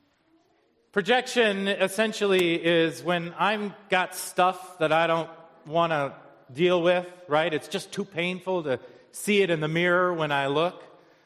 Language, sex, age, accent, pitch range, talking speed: English, male, 40-59, American, 130-200 Hz, 150 wpm